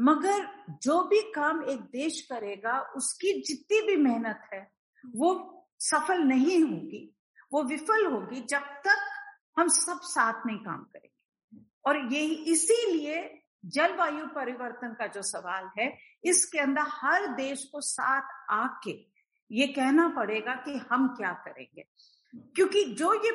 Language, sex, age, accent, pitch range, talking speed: Hindi, female, 50-69, native, 255-350 Hz, 135 wpm